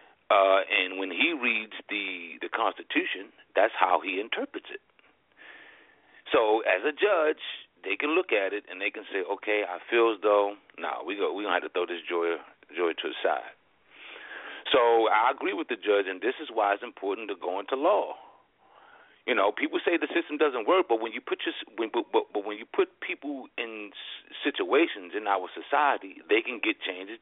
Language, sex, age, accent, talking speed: English, male, 40-59, American, 205 wpm